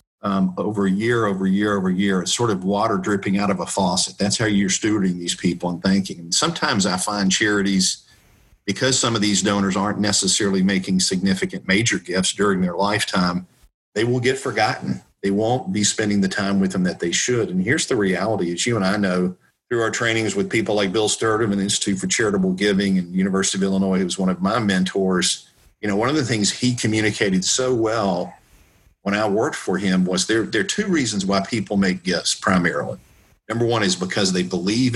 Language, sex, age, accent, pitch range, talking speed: English, male, 50-69, American, 95-115 Hz, 215 wpm